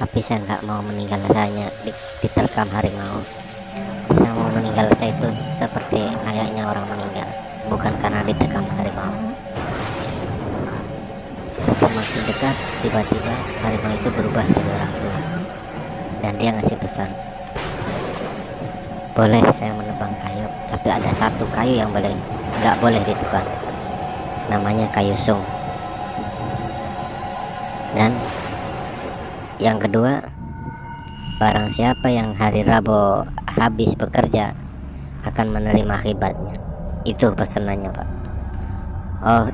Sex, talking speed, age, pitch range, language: male, 105 wpm, 30-49, 95-110 Hz, Indonesian